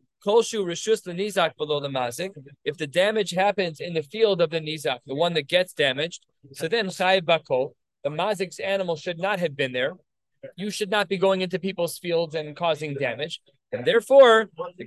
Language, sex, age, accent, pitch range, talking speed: English, male, 20-39, American, 160-210 Hz, 180 wpm